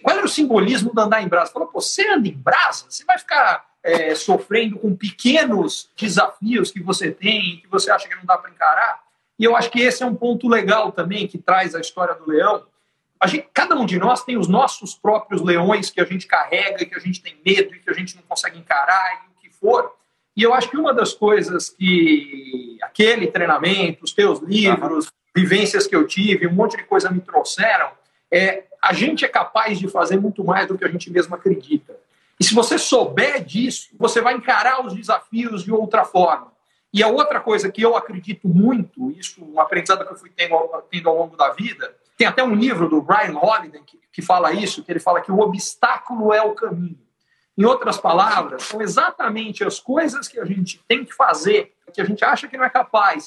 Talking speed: 215 wpm